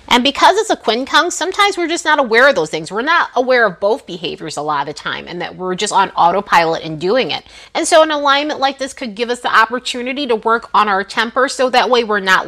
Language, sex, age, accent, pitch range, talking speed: English, female, 30-49, American, 220-305 Hz, 260 wpm